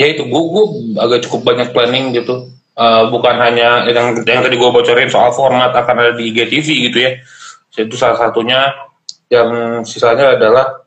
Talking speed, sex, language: 165 wpm, male, Indonesian